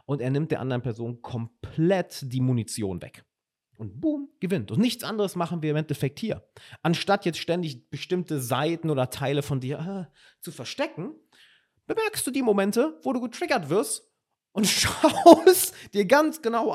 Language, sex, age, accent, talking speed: German, male, 30-49, German, 165 wpm